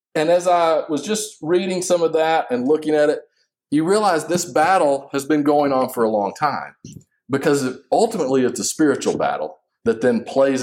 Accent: American